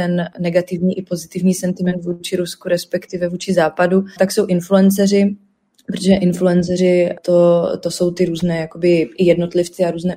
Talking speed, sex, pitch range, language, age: 140 wpm, female, 170-180 Hz, Slovak, 20-39